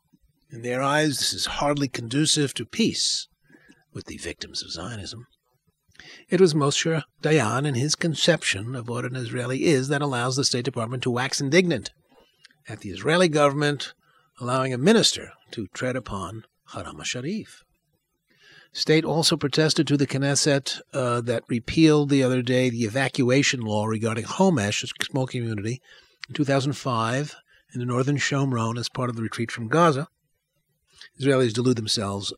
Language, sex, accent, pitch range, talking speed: English, male, American, 115-150 Hz, 155 wpm